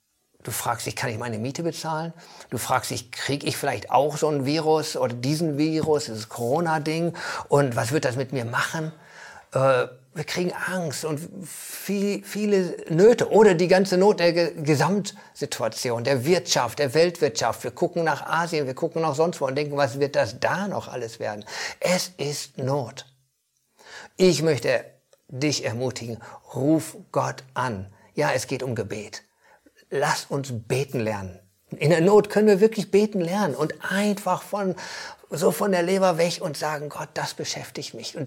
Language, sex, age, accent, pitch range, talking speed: German, male, 50-69, German, 135-180 Hz, 170 wpm